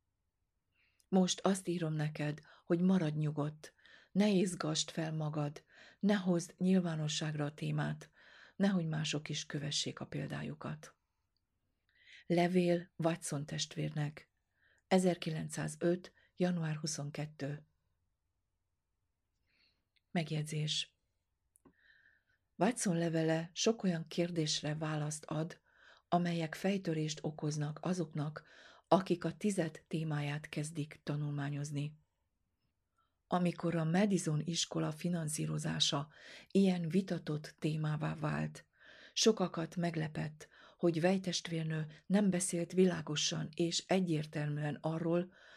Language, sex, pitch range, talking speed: Hungarian, female, 150-175 Hz, 85 wpm